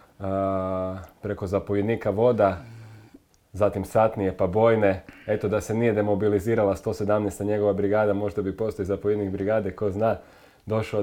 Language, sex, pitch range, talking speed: Croatian, male, 95-105 Hz, 130 wpm